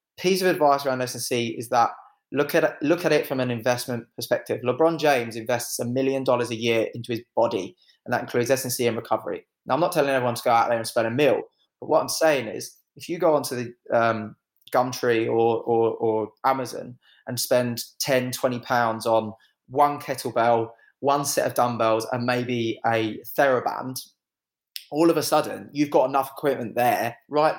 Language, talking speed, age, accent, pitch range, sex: English, 190 wpm, 20-39, British, 120-145 Hz, male